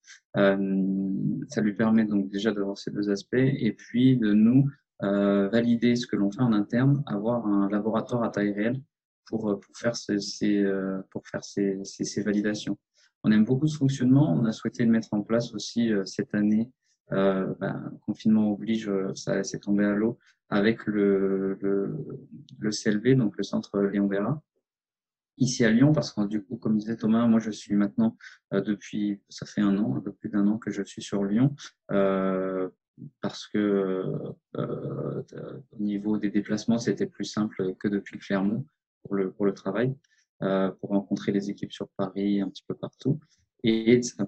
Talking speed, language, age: 185 wpm, French, 20-39